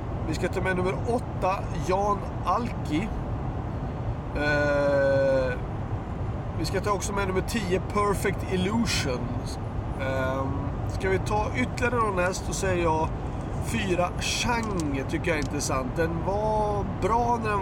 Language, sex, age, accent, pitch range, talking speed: Swedish, male, 30-49, native, 120-155 Hz, 135 wpm